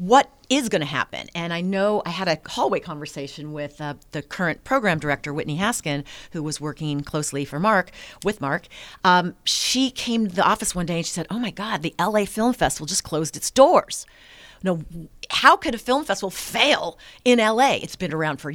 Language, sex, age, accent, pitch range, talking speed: English, female, 40-59, American, 150-200 Hz, 205 wpm